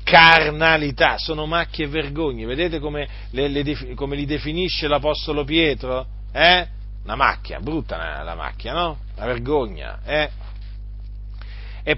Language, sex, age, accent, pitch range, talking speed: Italian, male, 40-59, native, 125-180 Hz, 125 wpm